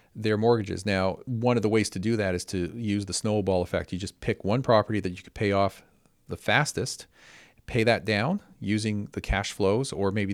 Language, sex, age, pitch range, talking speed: English, male, 40-59, 95-115 Hz, 215 wpm